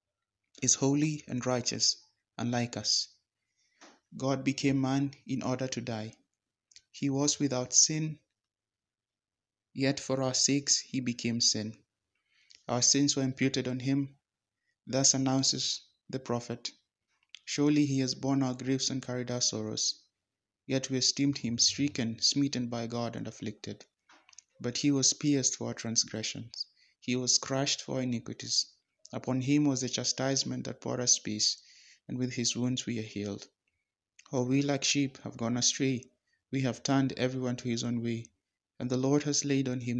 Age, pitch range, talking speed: 20-39, 115-135 Hz, 160 wpm